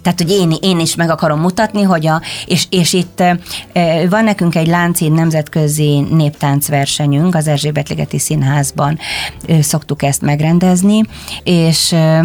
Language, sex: Hungarian, female